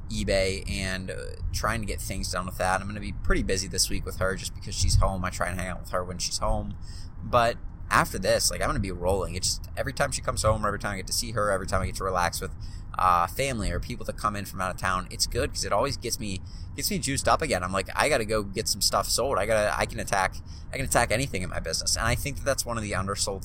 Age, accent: 20-39, American